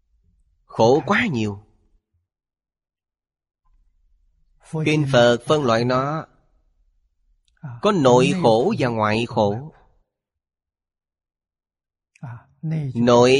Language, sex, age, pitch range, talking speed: Vietnamese, male, 20-39, 105-145 Hz, 65 wpm